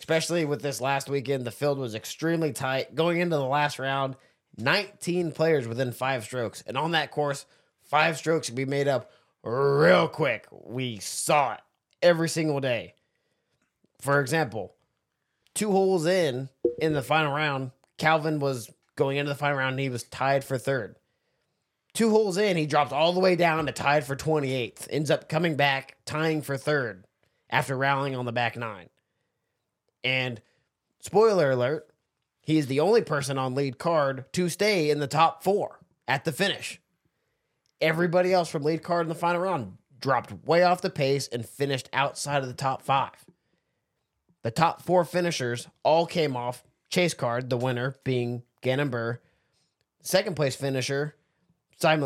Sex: male